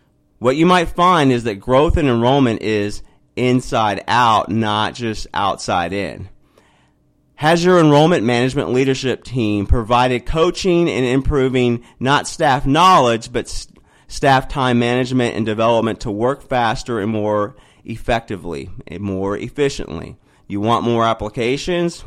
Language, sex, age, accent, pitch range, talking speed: English, male, 30-49, American, 105-125 Hz, 130 wpm